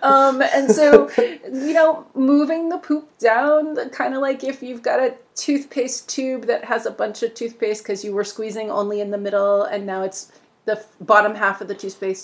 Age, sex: 30-49, female